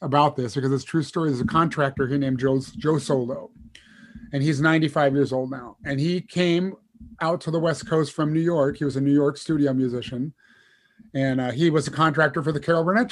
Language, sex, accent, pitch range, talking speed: English, male, American, 135-160 Hz, 225 wpm